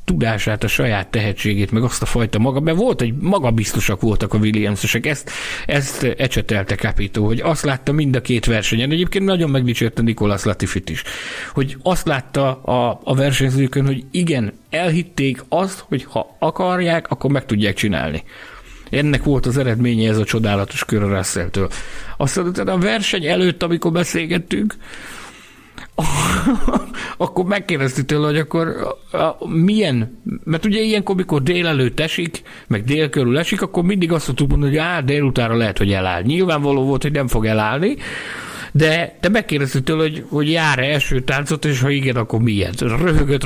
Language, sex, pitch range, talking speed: Hungarian, male, 115-165 Hz, 155 wpm